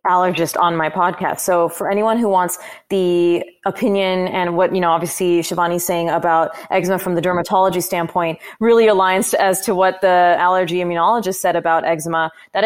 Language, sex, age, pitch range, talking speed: English, female, 20-39, 170-200 Hz, 175 wpm